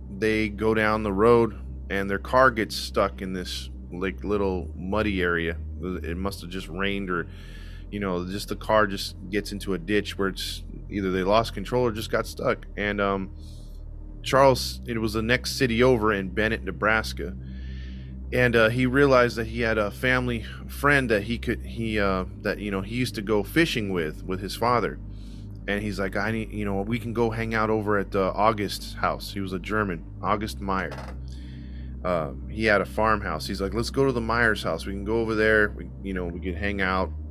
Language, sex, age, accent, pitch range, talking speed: English, male, 20-39, American, 85-110 Hz, 205 wpm